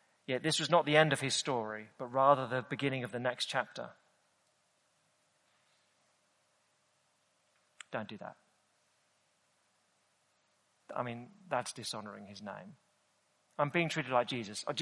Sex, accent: male, British